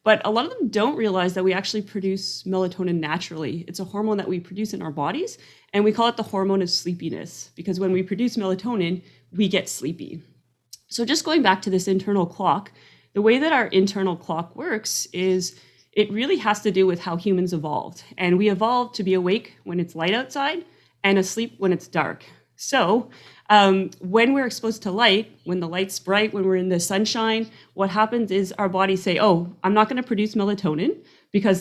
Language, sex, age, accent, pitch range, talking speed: English, female, 30-49, American, 185-215 Hz, 205 wpm